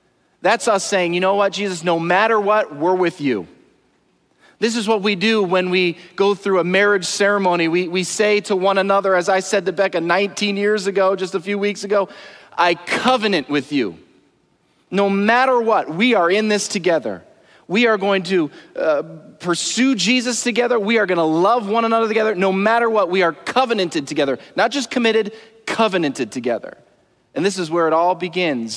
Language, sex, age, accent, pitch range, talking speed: English, male, 30-49, American, 165-210 Hz, 190 wpm